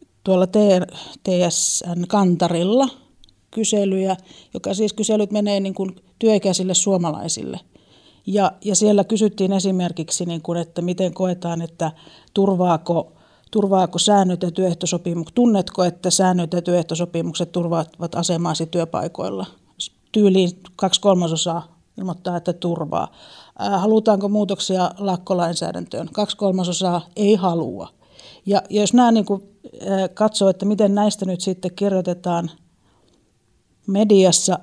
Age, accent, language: 50-69, native, Finnish